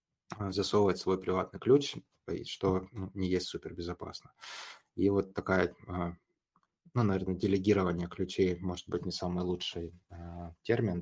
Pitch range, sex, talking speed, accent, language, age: 85-95 Hz, male, 120 wpm, native, Russian, 20-39